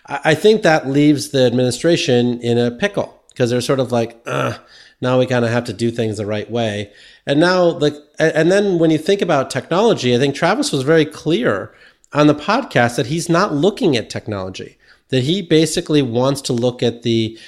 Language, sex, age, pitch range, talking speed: English, male, 40-59, 115-150 Hz, 200 wpm